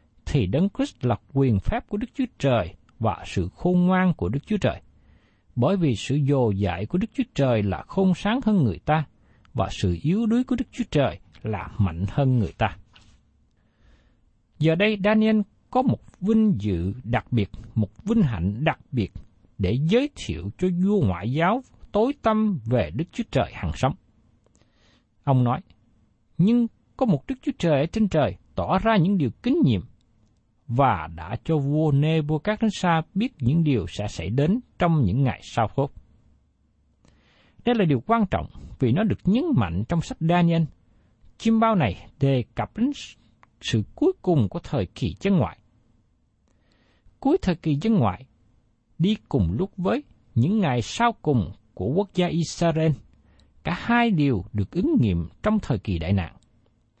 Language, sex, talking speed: Vietnamese, male, 170 wpm